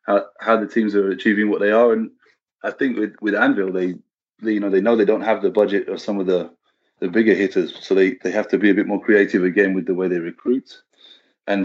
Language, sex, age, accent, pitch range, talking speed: English, male, 30-49, British, 95-110 Hz, 260 wpm